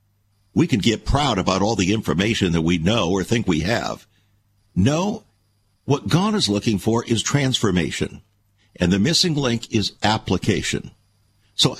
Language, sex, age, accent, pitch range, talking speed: English, male, 60-79, American, 100-140 Hz, 155 wpm